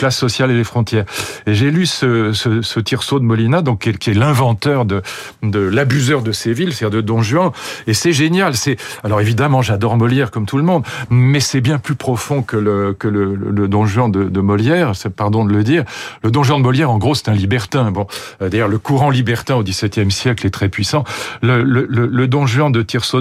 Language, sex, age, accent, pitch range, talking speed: French, male, 40-59, French, 110-135 Hz, 240 wpm